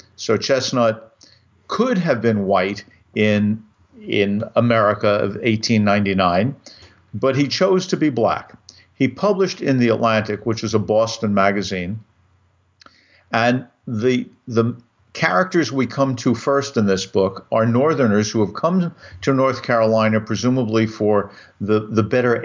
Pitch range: 105-130 Hz